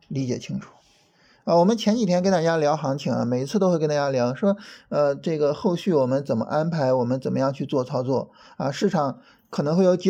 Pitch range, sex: 135-190 Hz, male